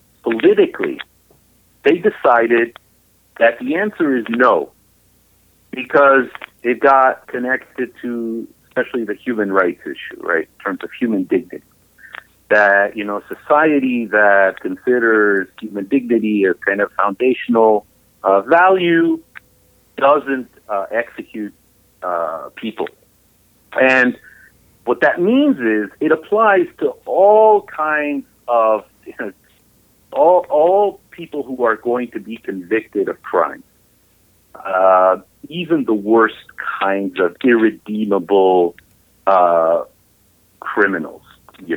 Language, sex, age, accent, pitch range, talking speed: English, male, 50-69, American, 105-170 Hz, 110 wpm